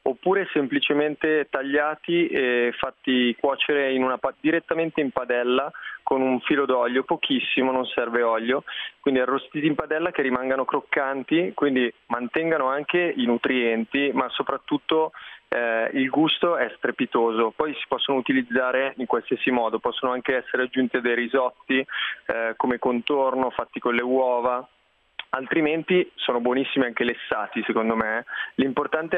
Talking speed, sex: 140 wpm, male